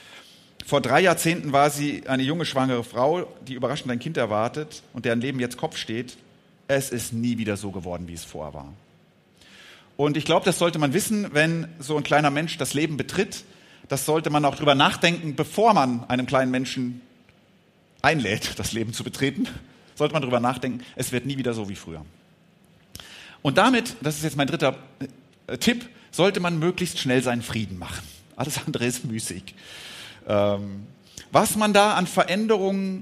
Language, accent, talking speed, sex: German, German, 175 wpm, male